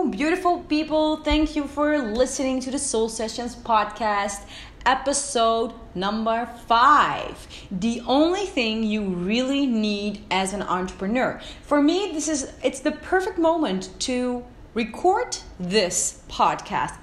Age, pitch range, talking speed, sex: 30-49, 195-260 Hz, 125 wpm, female